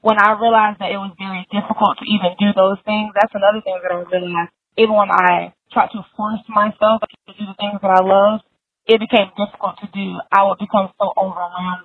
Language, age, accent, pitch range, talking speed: English, 20-39, American, 185-210 Hz, 220 wpm